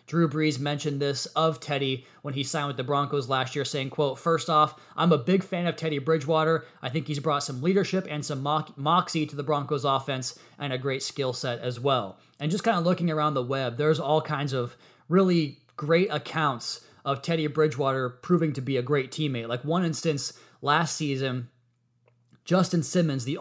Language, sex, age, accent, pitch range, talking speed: English, male, 20-39, American, 135-160 Hz, 195 wpm